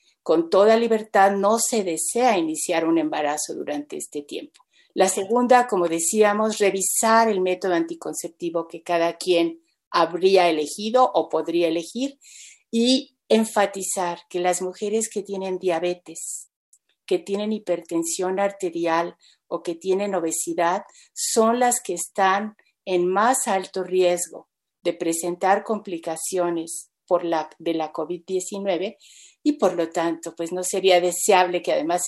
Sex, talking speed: female, 130 wpm